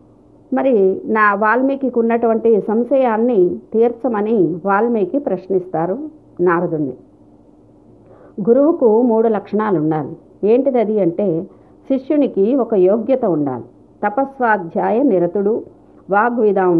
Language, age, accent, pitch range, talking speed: Telugu, 50-69, native, 185-240 Hz, 80 wpm